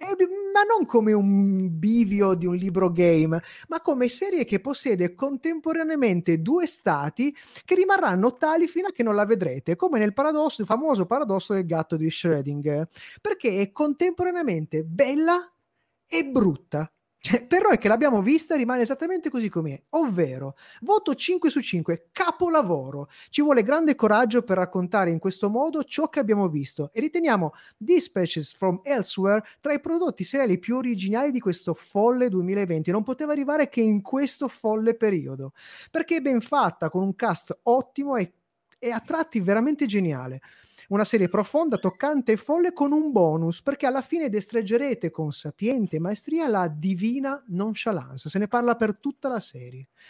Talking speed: 160 wpm